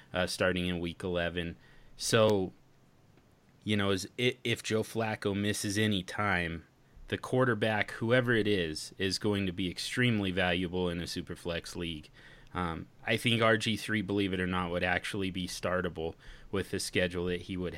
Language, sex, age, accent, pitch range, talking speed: English, male, 30-49, American, 90-115 Hz, 165 wpm